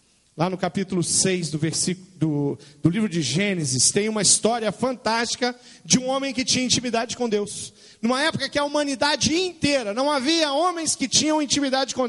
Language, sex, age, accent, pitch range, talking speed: Portuguese, male, 40-59, Brazilian, 130-205 Hz, 170 wpm